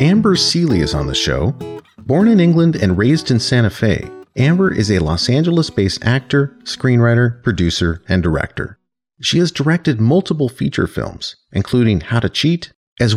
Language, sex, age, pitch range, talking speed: English, male, 40-59, 90-135 Hz, 160 wpm